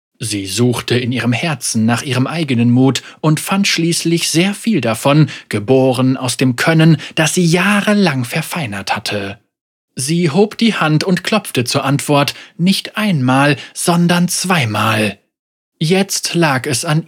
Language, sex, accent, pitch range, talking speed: German, male, German, 120-175 Hz, 140 wpm